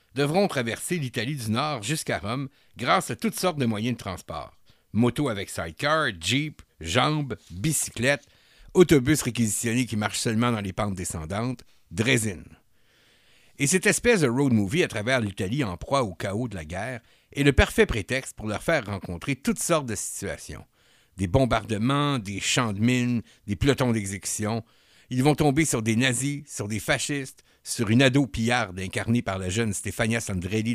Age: 60-79